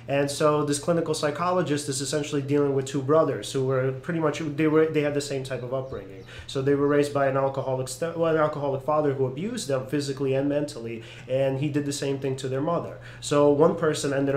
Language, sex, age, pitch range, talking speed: English, male, 30-49, 130-150 Hz, 225 wpm